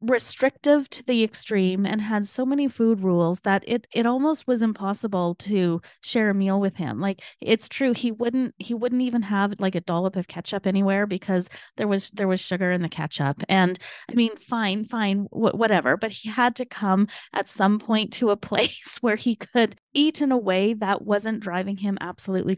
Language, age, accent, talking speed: English, 20-39, American, 200 wpm